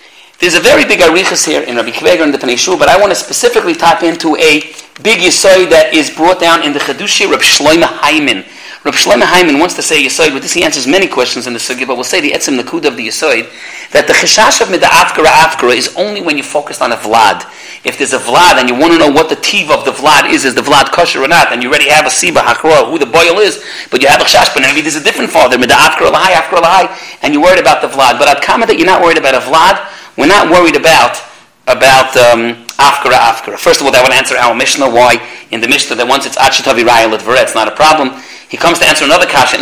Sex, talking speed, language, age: male, 255 wpm, English, 40-59